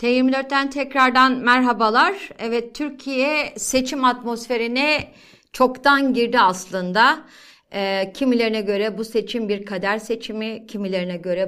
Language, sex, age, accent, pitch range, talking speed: Turkish, female, 60-79, native, 200-260 Hz, 105 wpm